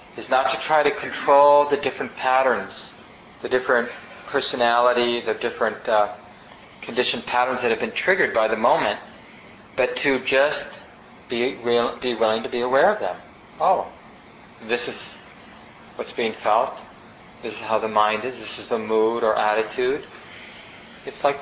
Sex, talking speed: male, 155 wpm